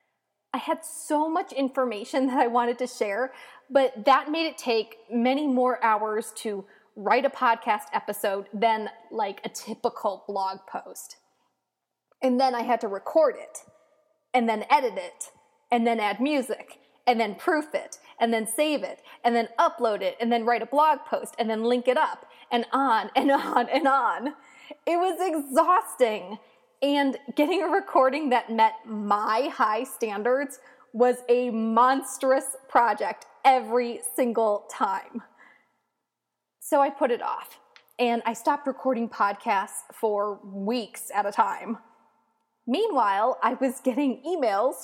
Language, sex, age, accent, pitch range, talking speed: English, female, 20-39, American, 225-280 Hz, 150 wpm